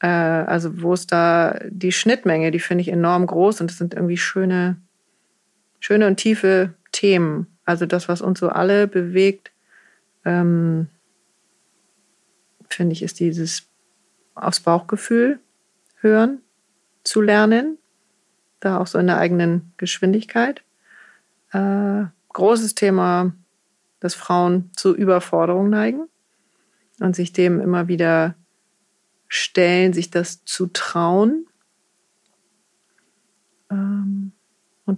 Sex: female